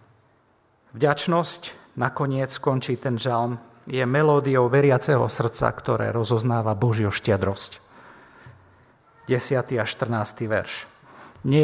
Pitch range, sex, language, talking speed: 115-135 Hz, male, Slovak, 95 wpm